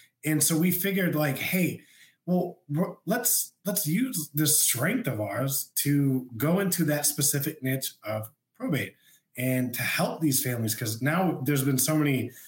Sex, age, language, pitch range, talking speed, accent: male, 20-39, English, 125-155 Hz, 160 wpm, American